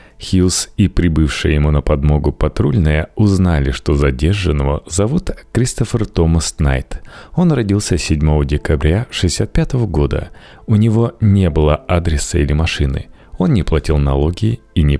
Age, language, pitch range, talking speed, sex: 30-49, Russian, 75-110 Hz, 130 wpm, male